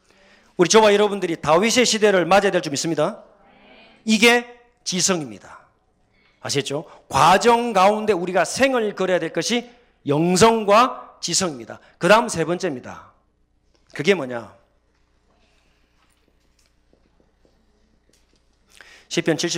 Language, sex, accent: Korean, male, native